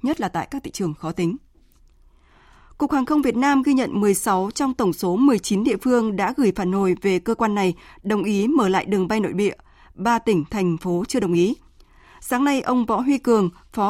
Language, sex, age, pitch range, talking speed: Vietnamese, female, 20-39, 180-230 Hz, 225 wpm